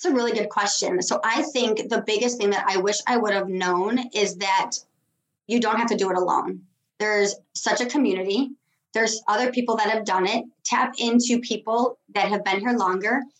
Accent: American